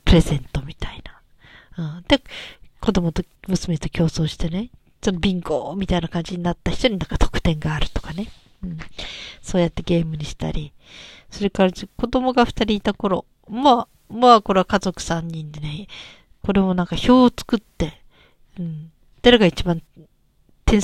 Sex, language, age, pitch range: female, Japanese, 40-59, 165-215 Hz